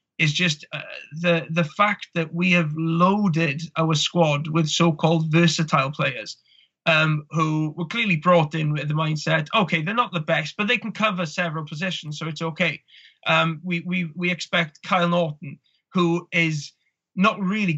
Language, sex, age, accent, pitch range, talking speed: English, male, 20-39, British, 155-170 Hz, 170 wpm